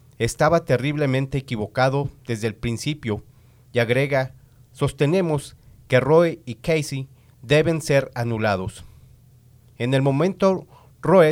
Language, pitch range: English, 125-155 Hz